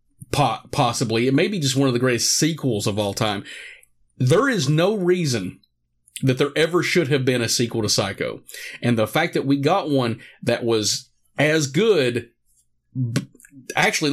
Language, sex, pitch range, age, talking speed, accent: English, male, 120-150 Hz, 40-59, 165 wpm, American